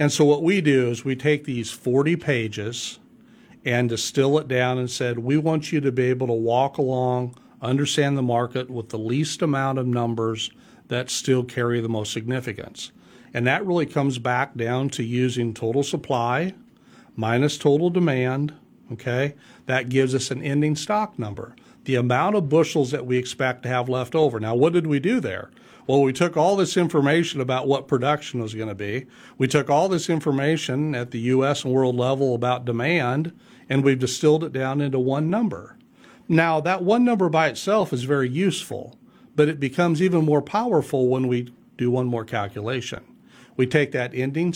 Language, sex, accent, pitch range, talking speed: English, male, American, 125-150 Hz, 185 wpm